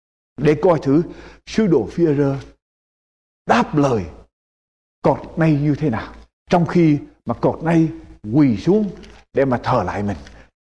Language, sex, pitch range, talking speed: Vietnamese, male, 135-215 Hz, 140 wpm